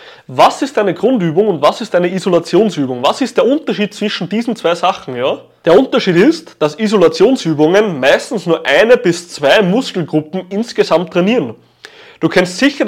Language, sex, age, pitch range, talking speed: German, male, 20-39, 170-260 Hz, 160 wpm